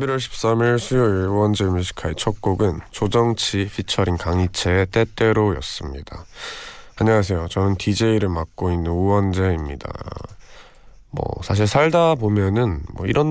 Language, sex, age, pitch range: Korean, male, 20-39, 85-115 Hz